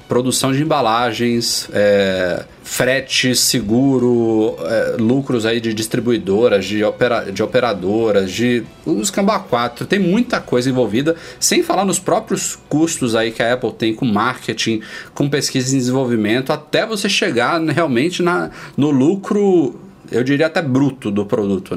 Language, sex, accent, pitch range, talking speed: Portuguese, male, Brazilian, 105-145 Hz, 140 wpm